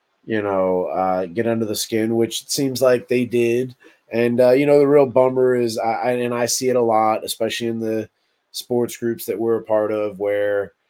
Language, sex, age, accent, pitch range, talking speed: English, male, 30-49, American, 100-115 Hz, 220 wpm